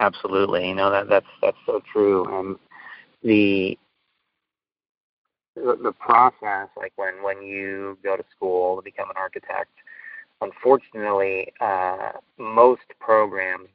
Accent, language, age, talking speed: American, English, 30-49, 120 wpm